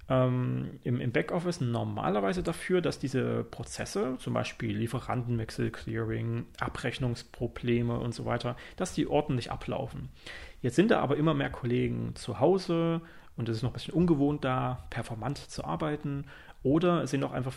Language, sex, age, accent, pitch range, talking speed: German, male, 30-49, German, 120-155 Hz, 150 wpm